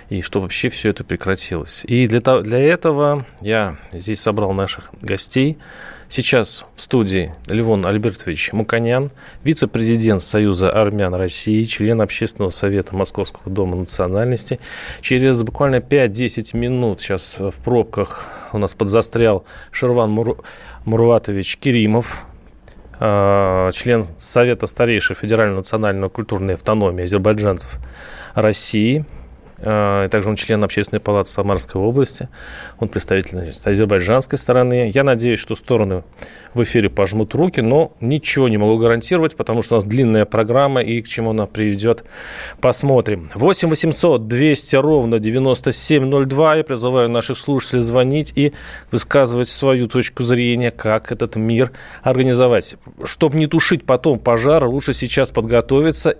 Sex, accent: male, native